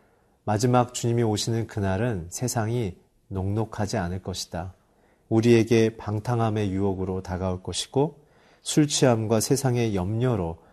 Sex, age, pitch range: male, 40-59, 100-125 Hz